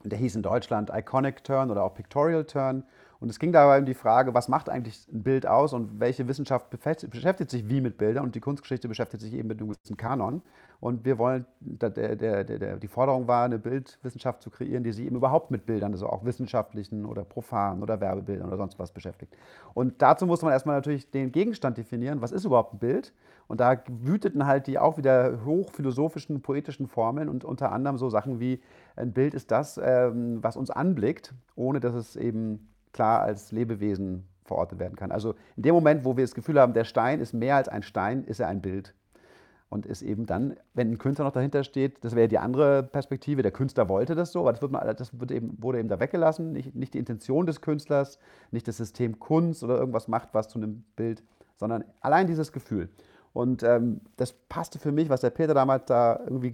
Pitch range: 115-140 Hz